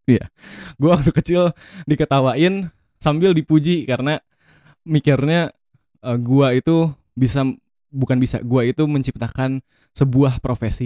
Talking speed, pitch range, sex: 110 wpm, 125-155 Hz, male